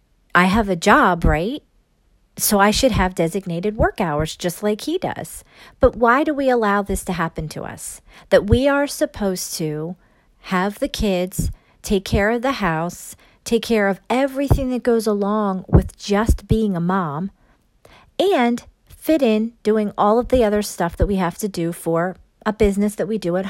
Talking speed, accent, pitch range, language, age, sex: 185 wpm, American, 175-215 Hz, English, 40-59, female